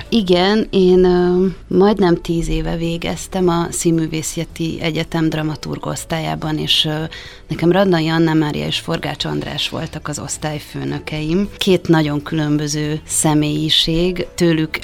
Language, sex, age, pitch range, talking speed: Hungarian, female, 30-49, 150-170 Hz, 115 wpm